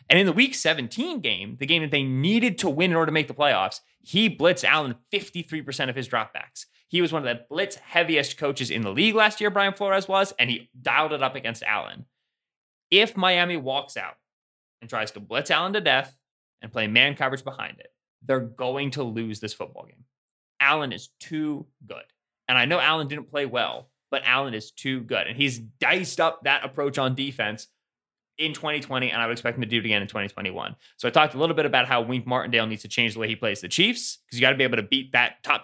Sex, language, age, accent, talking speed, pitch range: male, English, 20-39, American, 230 wpm, 120-165 Hz